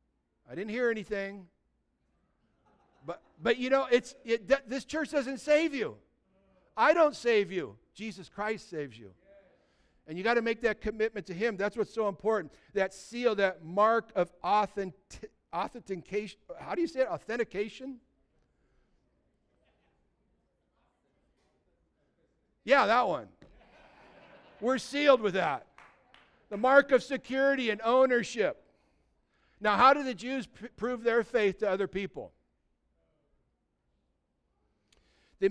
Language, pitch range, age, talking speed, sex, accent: English, 160-230 Hz, 60-79, 125 wpm, male, American